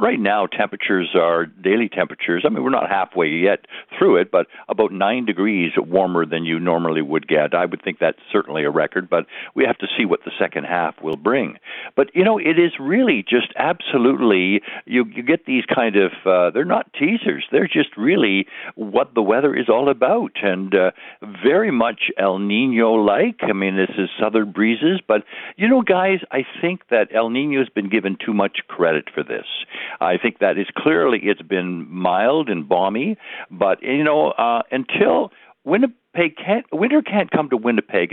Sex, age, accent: male, 60-79, American